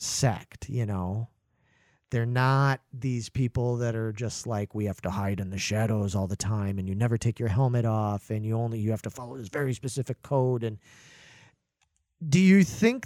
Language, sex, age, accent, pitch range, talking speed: English, male, 40-59, American, 110-140 Hz, 200 wpm